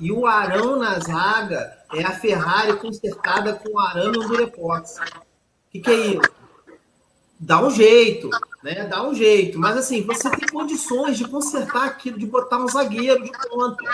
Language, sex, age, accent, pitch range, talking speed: Portuguese, male, 40-59, Brazilian, 205-260 Hz, 170 wpm